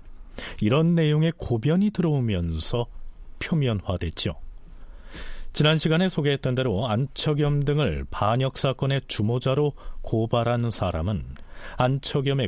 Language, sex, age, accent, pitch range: Korean, male, 40-59, native, 90-140 Hz